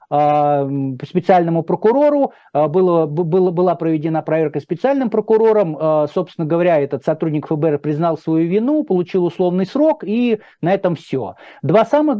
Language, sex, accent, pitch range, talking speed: Russian, male, native, 150-185 Hz, 130 wpm